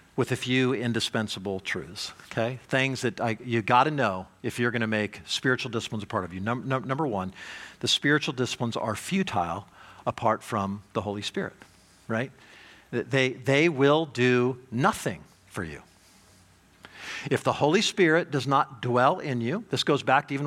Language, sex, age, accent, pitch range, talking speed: English, male, 50-69, American, 125-185 Hz, 160 wpm